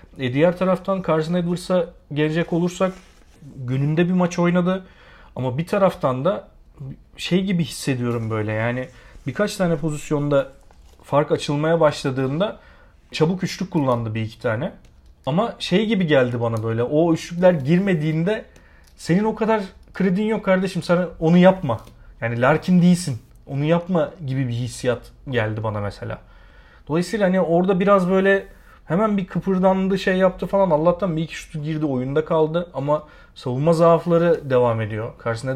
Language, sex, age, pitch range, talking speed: Turkish, male, 40-59, 125-175 Hz, 145 wpm